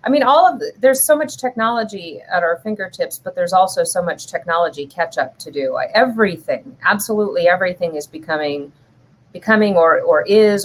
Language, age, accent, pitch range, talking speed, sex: English, 40-59, American, 170-230 Hz, 175 wpm, female